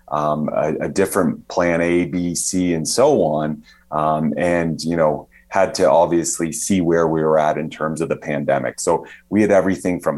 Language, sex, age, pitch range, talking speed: English, male, 30-49, 80-90 Hz, 195 wpm